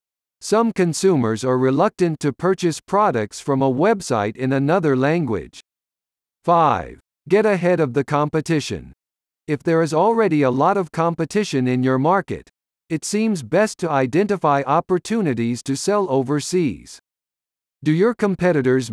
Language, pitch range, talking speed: English, 130-185 Hz, 135 wpm